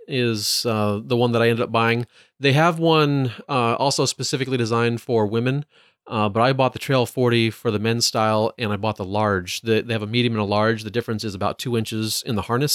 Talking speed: 235 wpm